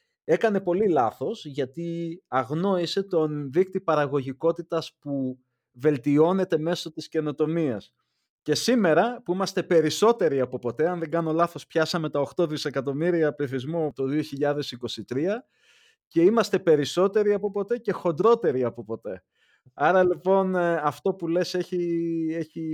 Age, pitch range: 30-49, 130-180 Hz